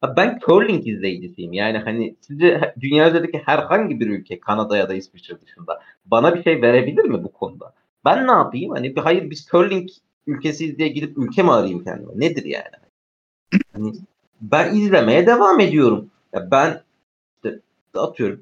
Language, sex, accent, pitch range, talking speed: Turkish, male, native, 125-175 Hz, 155 wpm